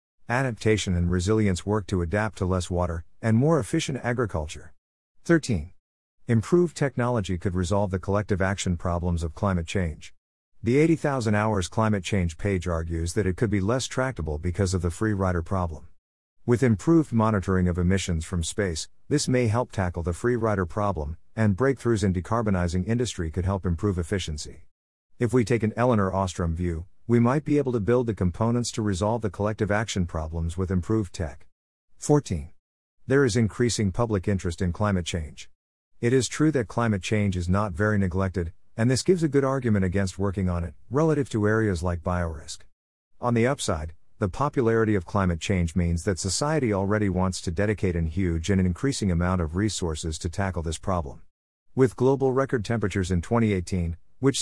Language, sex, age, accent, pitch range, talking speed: English, male, 50-69, American, 90-115 Hz, 175 wpm